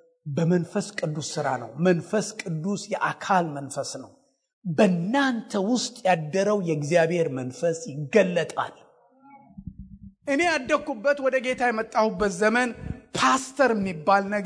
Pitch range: 170-225 Hz